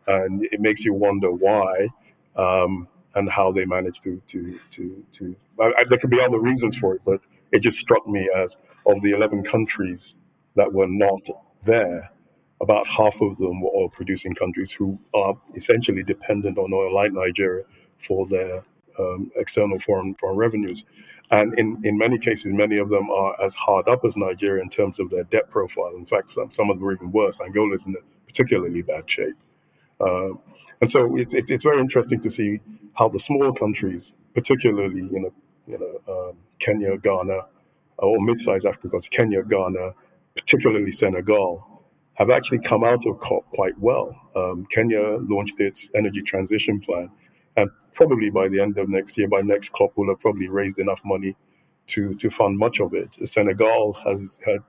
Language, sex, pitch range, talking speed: English, male, 95-120 Hz, 185 wpm